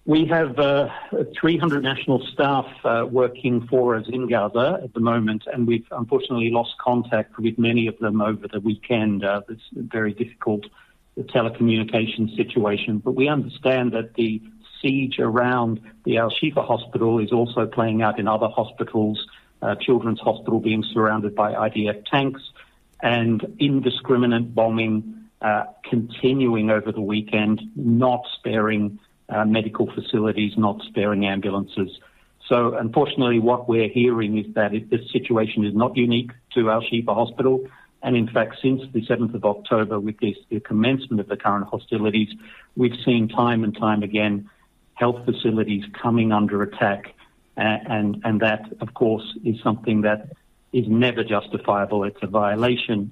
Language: English